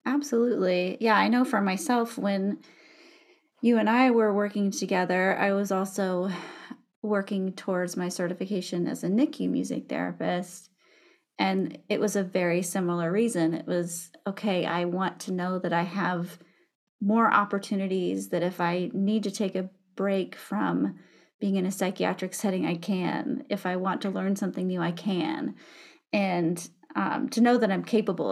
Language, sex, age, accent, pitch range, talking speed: English, female, 30-49, American, 180-215 Hz, 160 wpm